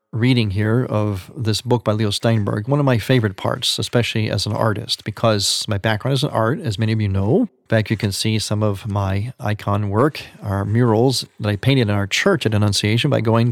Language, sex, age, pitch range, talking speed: English, male, 40-59, 110-135 Hz, 220 wpm